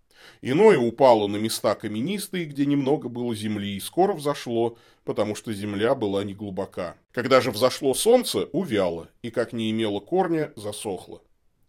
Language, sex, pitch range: Russian, male, 110-165 Hz